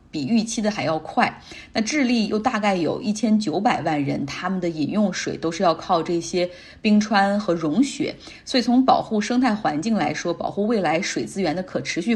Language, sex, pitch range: Chinese, female, 170-240 Hz